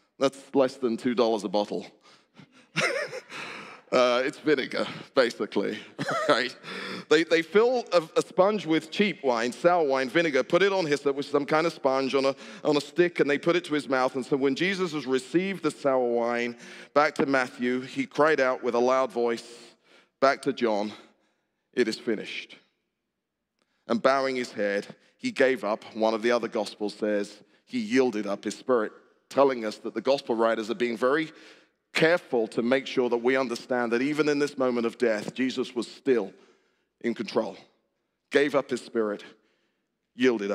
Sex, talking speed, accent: male, 180 wpm, British